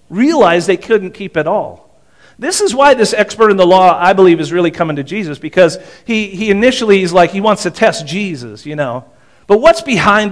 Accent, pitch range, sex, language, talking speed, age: American, 145-200 Hz, male, English, 215 wpm, 40-59